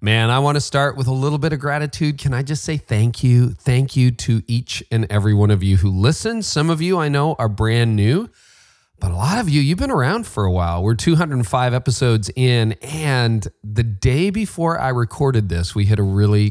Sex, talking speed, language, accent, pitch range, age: male, 225 wpm, English, American, 100-135 Hz, 40-59